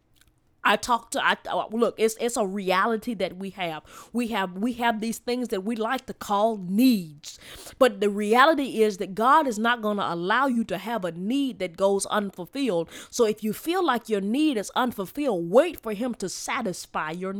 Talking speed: 205 wpm